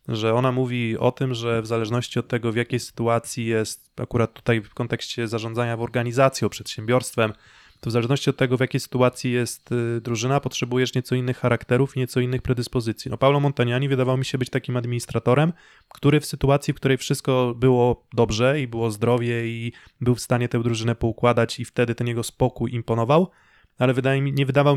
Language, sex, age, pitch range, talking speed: Polish, male, 20-39, 115-135 Hz, 190 wpm